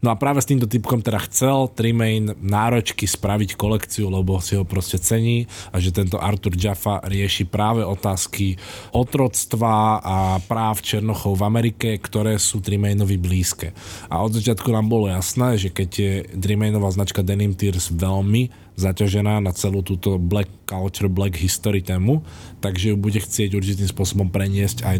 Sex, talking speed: male, 160 wpm